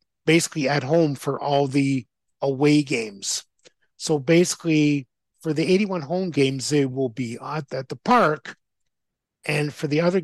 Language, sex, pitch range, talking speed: English, male, 140-180 Hz, 145 wpm